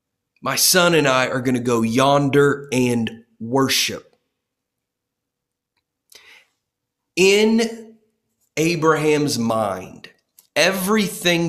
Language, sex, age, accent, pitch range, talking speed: English, male, 30-49, American, 120-165 Hz, 75 wpm